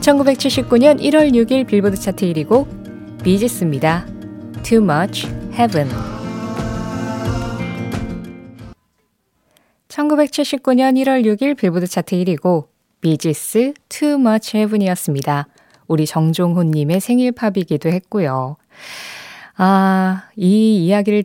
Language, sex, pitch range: Korean, female, 160-235 Hz